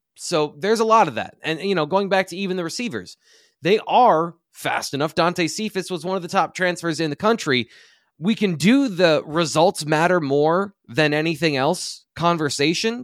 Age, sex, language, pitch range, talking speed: 20-39, male, English, 135-185 Hz, 190 wpm